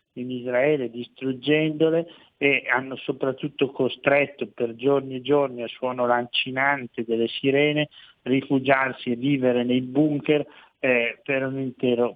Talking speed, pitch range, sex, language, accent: 125 wpm, 120-140 Hz, male, Italian, native